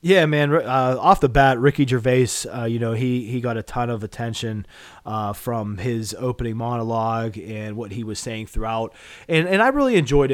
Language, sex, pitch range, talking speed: English, male, 125-155 Hz, 195 wpm